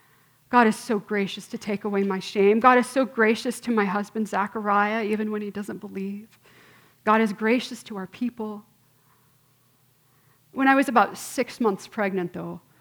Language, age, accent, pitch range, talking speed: English, 40-59, American, 195-265 Hz, 170 wpm